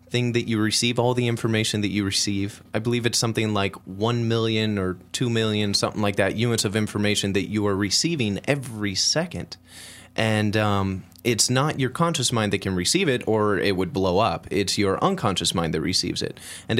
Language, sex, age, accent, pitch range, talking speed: English, male, 30-49, American, 95-115 Hz, 200 wpm